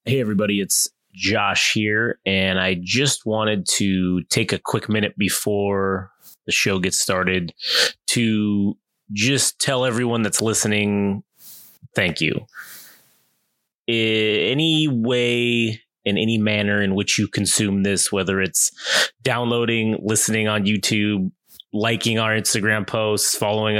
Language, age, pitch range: English, 20-39, 100-115 Hz